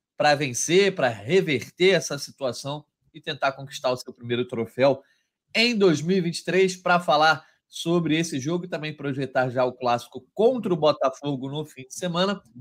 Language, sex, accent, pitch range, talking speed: Portuguese, male, Brazilian, 130-180 Hz, 155 wpm